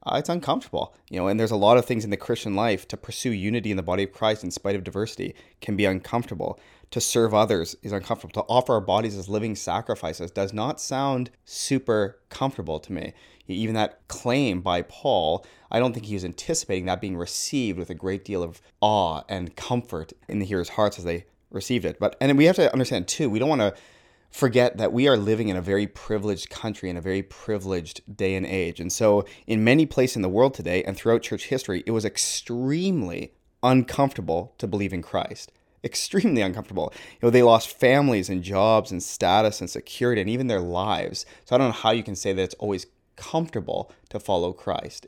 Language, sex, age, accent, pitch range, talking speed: English, male, 20-39, American, 95-120 Hz, 215 wpm